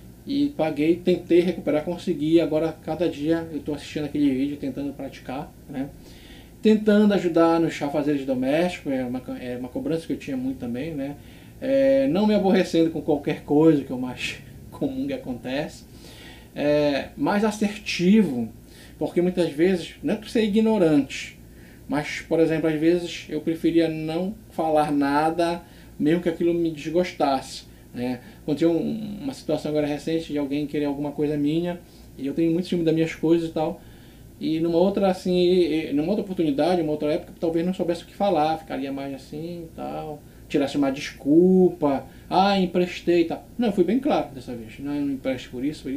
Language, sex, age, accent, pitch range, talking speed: Portuguese, male, 20-39, Brazilian, 145-180 Hz, 180 wpm